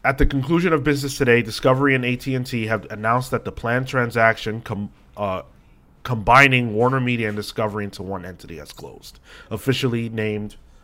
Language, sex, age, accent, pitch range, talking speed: English, male, 30-49, American, 100-130 Hz, 155 wpm